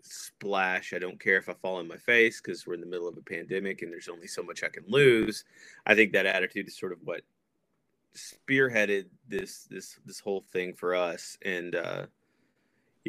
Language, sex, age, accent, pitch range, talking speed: English, male, 30-49, American, 95-130 Hz, 200 wpm